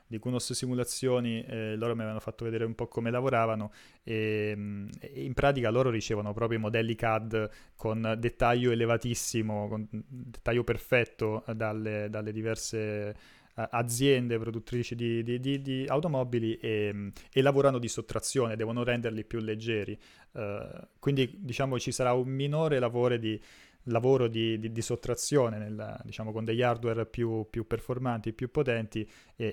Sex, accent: male, native